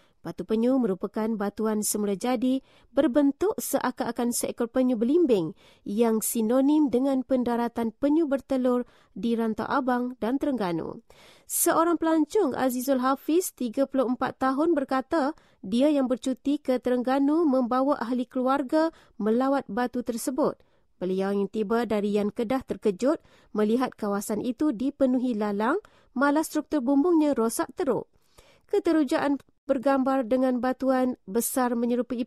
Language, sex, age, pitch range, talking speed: English, female, 30-49, 220-275 Hz, 115 wpm